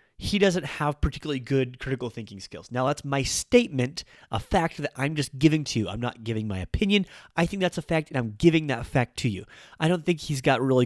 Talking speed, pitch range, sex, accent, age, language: 240 wpm, 115-150 Hz, male, American, 30-49, English